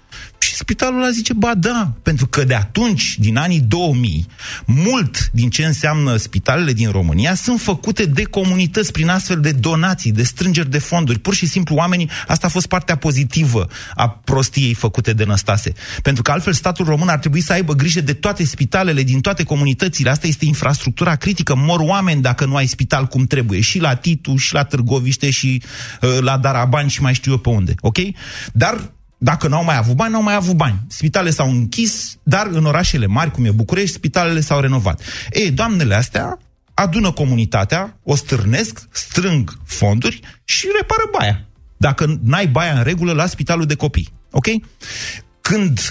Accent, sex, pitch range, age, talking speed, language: native, male, 115-170 Hz, 30-49, 180 wpm, Romanian